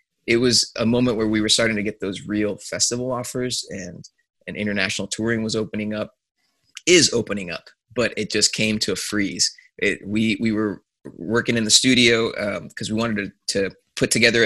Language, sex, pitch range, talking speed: English, male, 105-120 Hz, 195 wpm